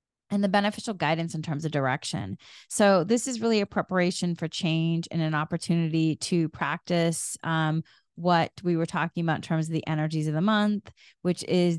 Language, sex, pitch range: English, female, 155-180 Hz